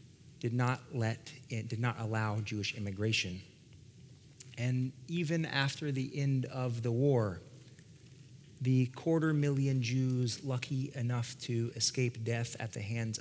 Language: English